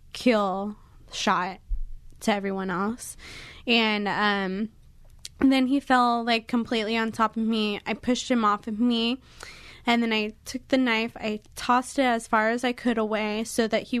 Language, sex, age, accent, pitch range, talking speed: English, female, 20-39, American, 215-245 Hz, 170 wpm